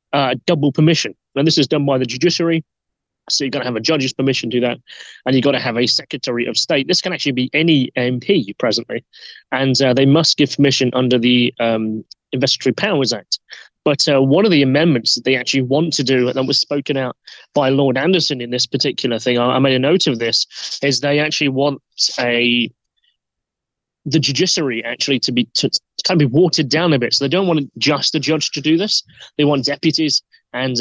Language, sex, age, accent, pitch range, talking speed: English, male, 30-49, British, 125-155 Hz, 215 wpm